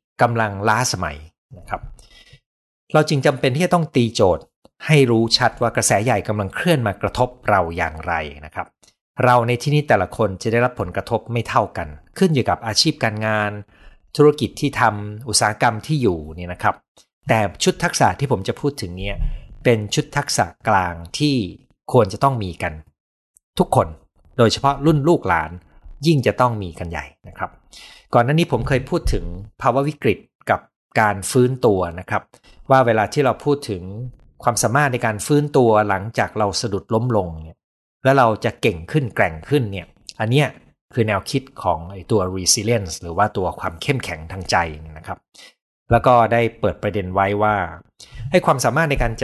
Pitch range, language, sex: 95-130 Hz, Thai, male